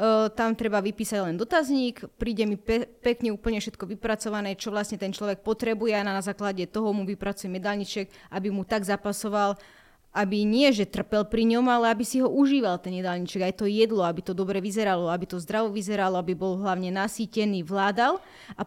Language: Slovak